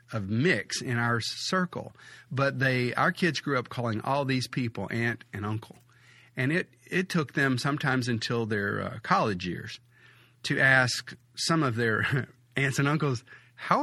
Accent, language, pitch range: American, English, 110-135 Hz